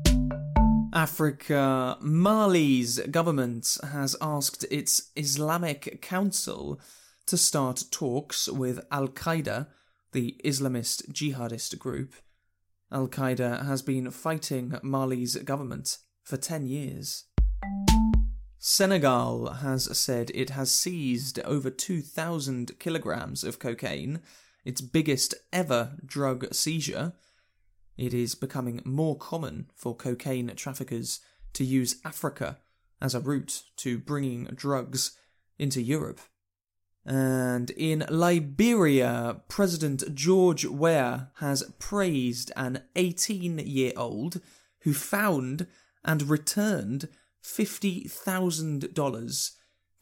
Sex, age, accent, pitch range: male, 20-39, British, 125-160 Hz